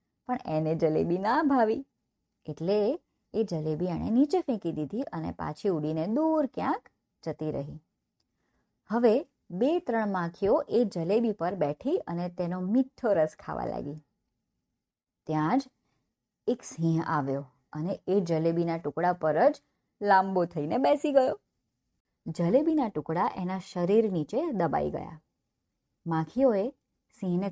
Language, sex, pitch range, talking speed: Gujarati, male, 165-240 Hz, 55 wpm